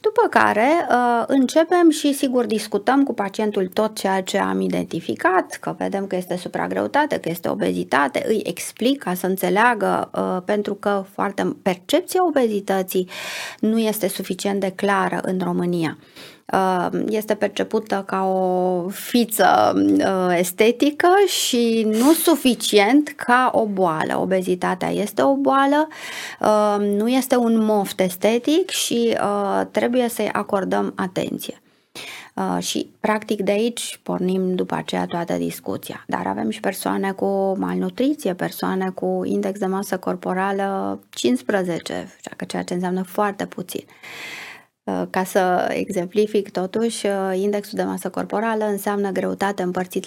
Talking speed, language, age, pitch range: 125 wpm, Romanian, 30-49, 180-240 Hz